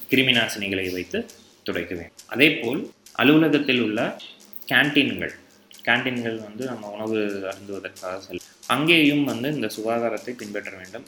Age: 20-39